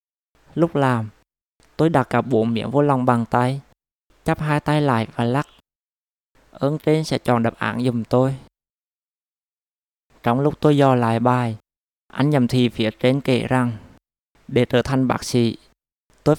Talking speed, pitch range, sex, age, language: 160 wpm, 115-140 Hz, male, 20-39, Vietnamese